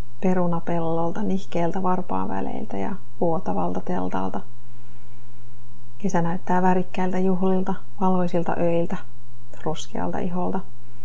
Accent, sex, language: native, female, Finnish